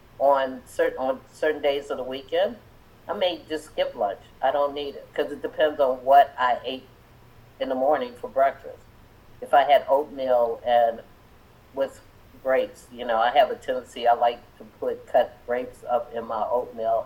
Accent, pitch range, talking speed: American, 120-150 Hz, 185 wpm